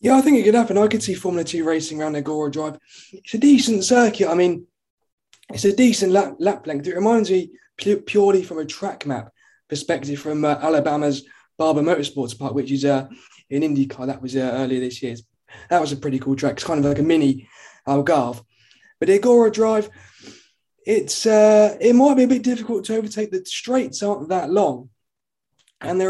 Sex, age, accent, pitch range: male, 20-39, British, 145-205 Hz